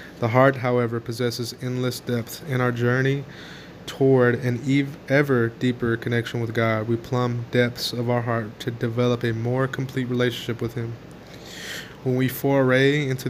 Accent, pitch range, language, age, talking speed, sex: American, 115-130 Hz, English, 20-39, 160 wpm, male